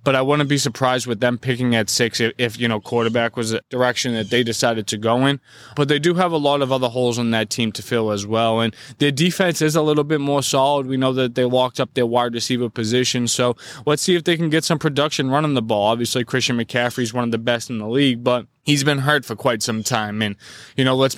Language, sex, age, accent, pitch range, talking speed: English, male, 20-39, American, 120-140 Hz, 265 wpm